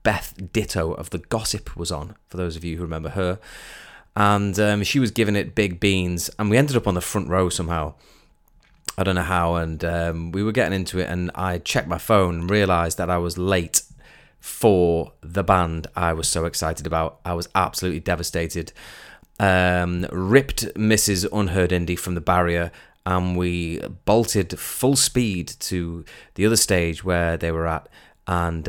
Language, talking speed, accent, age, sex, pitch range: English, 180 wpm, British, 20-39, male, 85-95 Hz